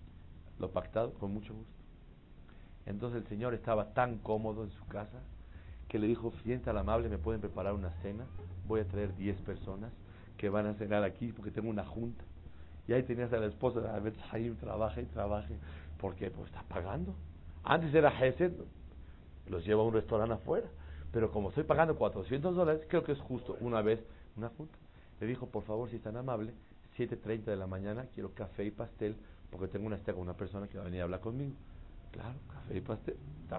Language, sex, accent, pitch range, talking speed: Spanish, male, Mexican, 90-115 Hz, 200 wpm